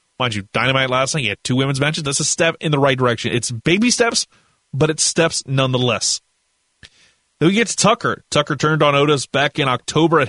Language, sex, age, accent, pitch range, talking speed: English, male, 30-49, American, 125-160 Hz, 215 wpm